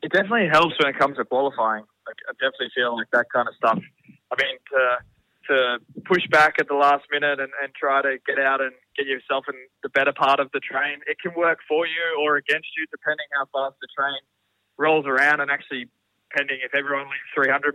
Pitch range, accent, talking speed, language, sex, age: 130-155 Hz, Australian, 215 wpm, English, male, 20-39